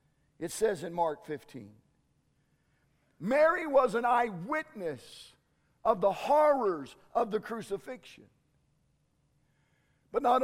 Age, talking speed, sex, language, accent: 50-69, 100 wpm, male, English, American